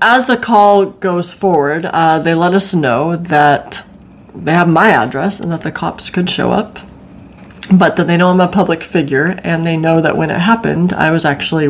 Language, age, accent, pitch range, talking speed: English, 30-49, American, 150-195 Hz, 205 wpm